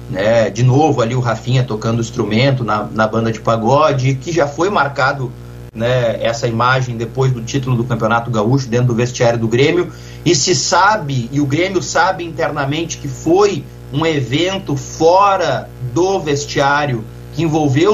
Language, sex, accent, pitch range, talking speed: Portuguese, male, Brazilian, 120-155 Hz, 155 wpm